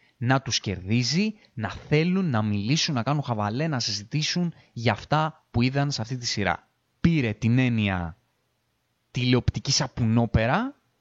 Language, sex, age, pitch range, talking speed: Greek, male, 20-39, 110-150 Hz, 135 wpm